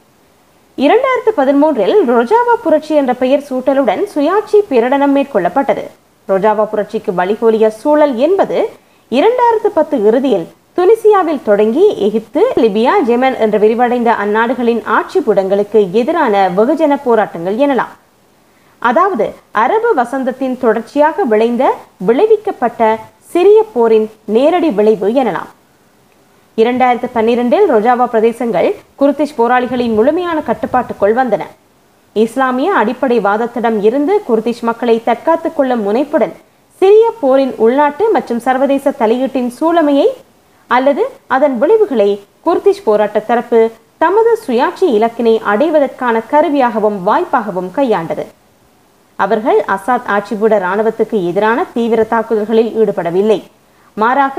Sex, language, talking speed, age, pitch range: female, Tamil, 80 wpm, 20-39, 220-305 Hz